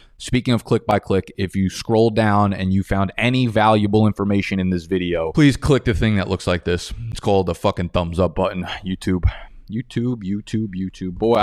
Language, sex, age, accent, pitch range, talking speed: English, male, 20-39, American, 90-120 Hz, 200 wpm